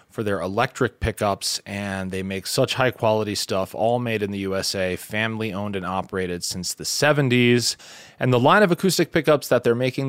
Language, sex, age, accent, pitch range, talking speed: English, male, 30-49, American, 95-135 Hz, 190 wpm